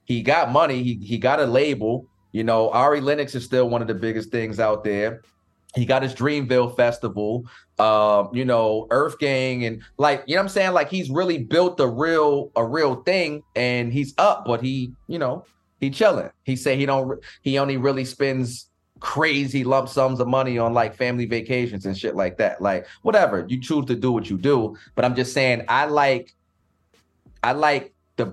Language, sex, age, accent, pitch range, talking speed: English, male, 30-49, American, 115-140 Hz, 200 wpm